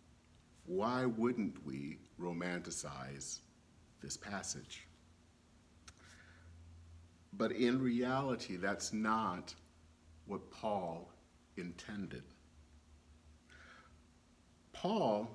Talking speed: 60 wpm